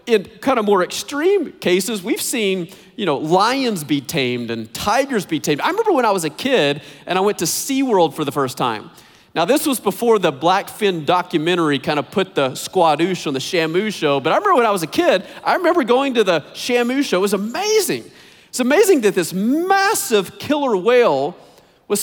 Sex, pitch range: male, 180-275 Hz